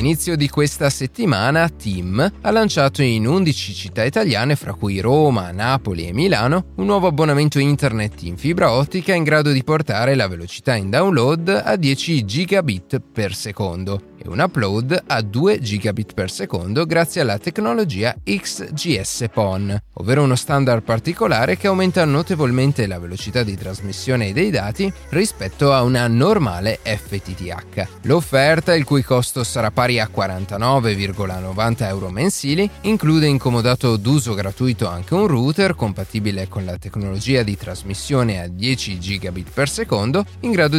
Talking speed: 145 wpm